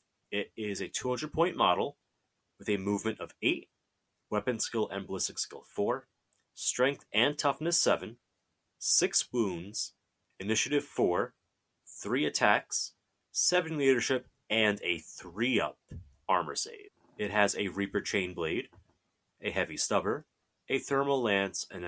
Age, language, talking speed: 30-49, English, 125 wpm